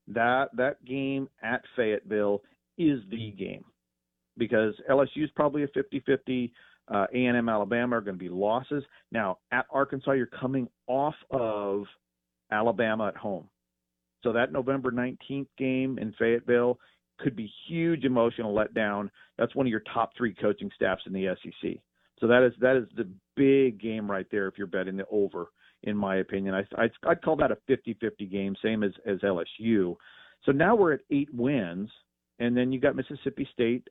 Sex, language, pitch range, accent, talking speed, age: male, English, 105-130 Hz, American, 170 wpm, 50-69